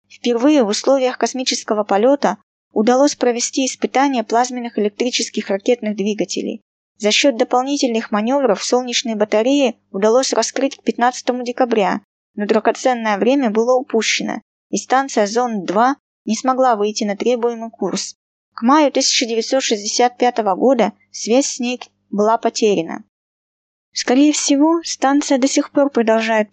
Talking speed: 120 wpm